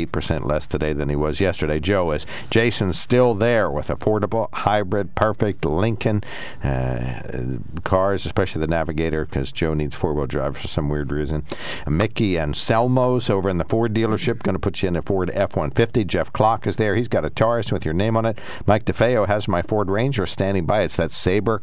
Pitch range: 80-115 Hz